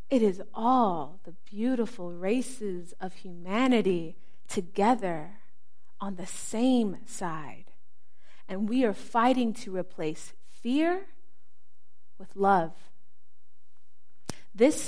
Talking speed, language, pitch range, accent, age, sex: 95 wpm, English, 185-240 Hz, American, 30-49, female